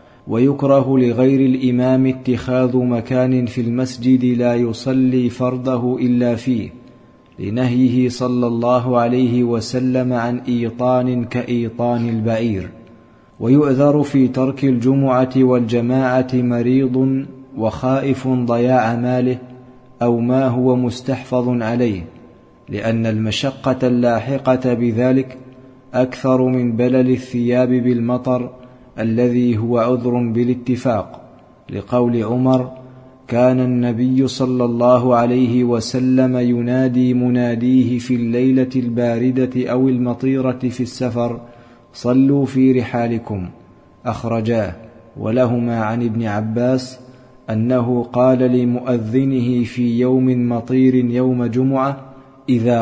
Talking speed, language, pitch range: 95 wpm, Arabic, 120-130 Hz